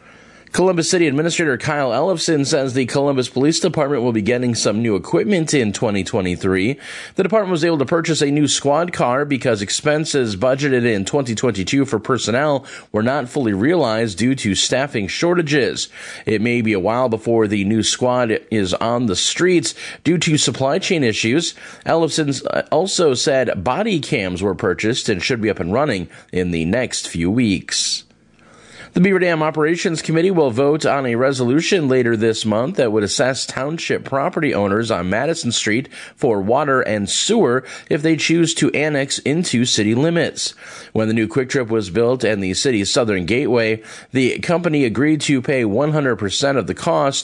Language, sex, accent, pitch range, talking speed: English, male, American, 110-155 Hz, 170 wpm